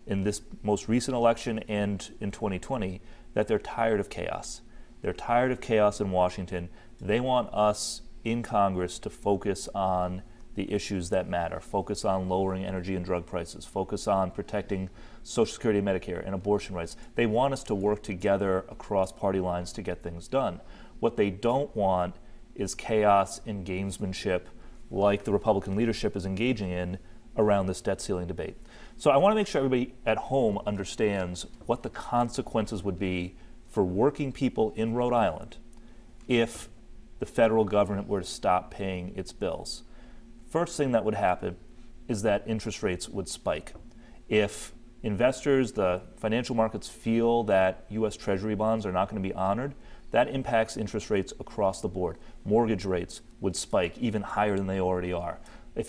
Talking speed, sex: 165 wpm, male